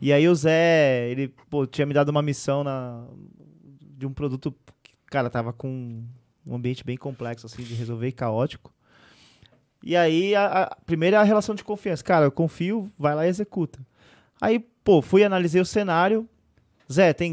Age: 20-39